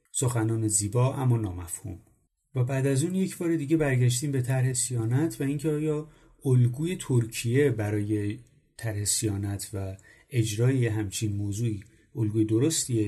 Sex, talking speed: male, 135 wpm